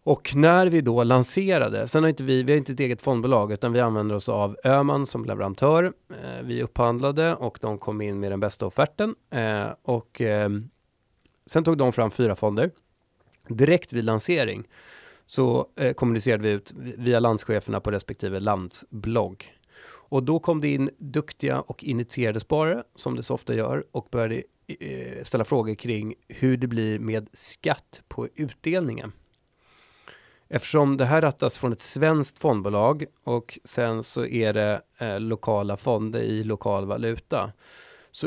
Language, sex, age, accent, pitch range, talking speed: Swedish, male, 30-49, native, 105-135 Hz, 150 wpm